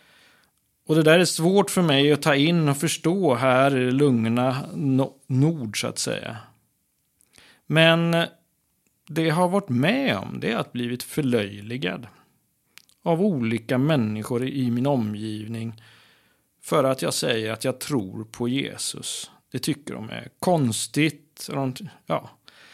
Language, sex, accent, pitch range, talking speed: Swedish, male, native, 120-160 Hz, 135 wpm